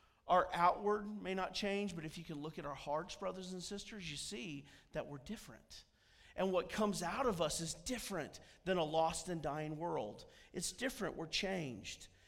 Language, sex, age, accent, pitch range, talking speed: English, male, 40-59, American, 135-185 Hz, 190 wpm